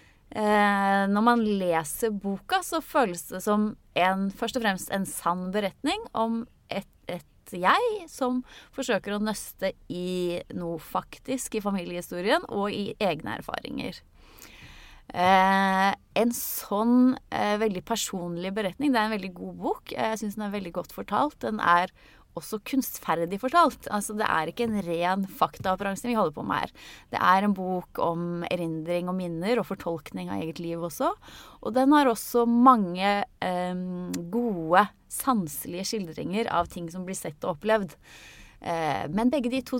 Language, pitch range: English, 180-235 Hz